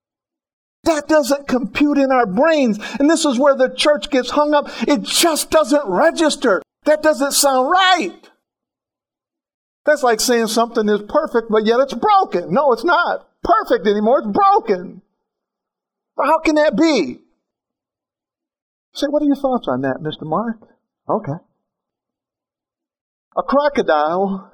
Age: 50-69